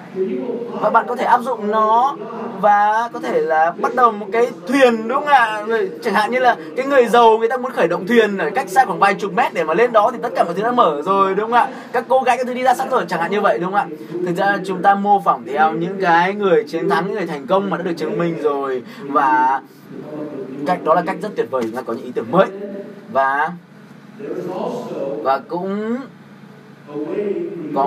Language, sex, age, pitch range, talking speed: Vietnamese, male, 20-39, 170-230 Hz, 240 wpm